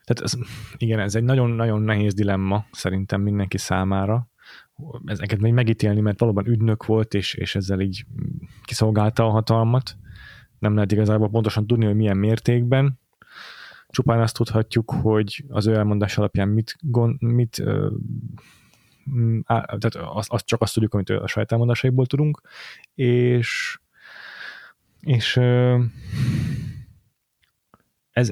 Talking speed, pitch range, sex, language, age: 120 wpm, 105-120 Hz, male, Hungarian, 20-39